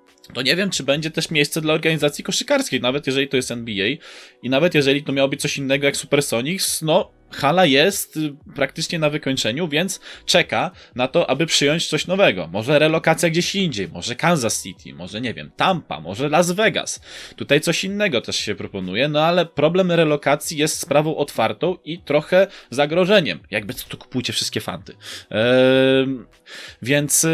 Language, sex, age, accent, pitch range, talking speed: Polish, male, 20-39, native, 130-175 Hz, 165 wpm